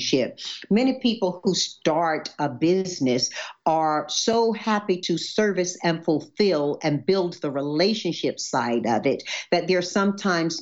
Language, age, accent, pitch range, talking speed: English, 50-69, American, 155-190 Hz, 130 wpm